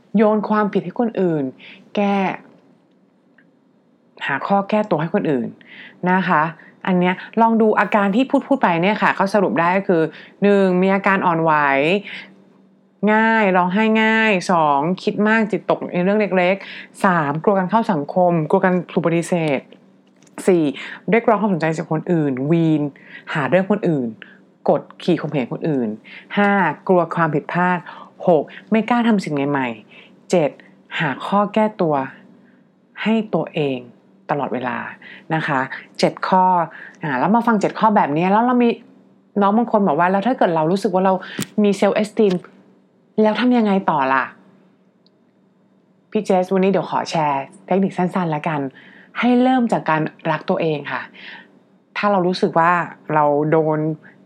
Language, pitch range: English, 165-215 Hz